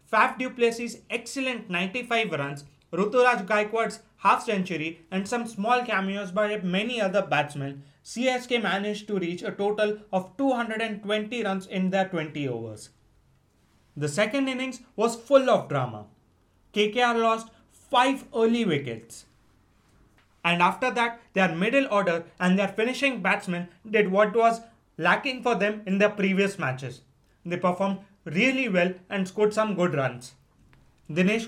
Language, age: English, 30-49